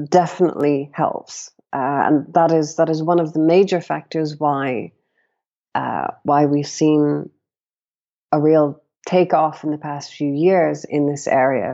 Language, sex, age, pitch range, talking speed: English, female, 30-49, 145-175 Hz, 150 wpm